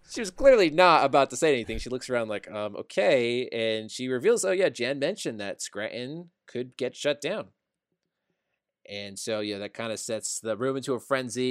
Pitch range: 110-135 Hz